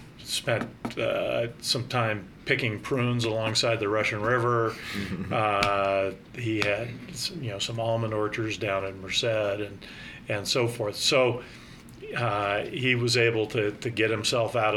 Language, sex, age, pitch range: English, male, 40-59, 110-120 Hz